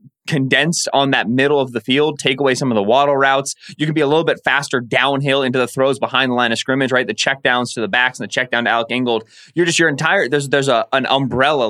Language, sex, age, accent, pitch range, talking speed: English, male, 20-39, American, 115-135 Hz, 260 wpm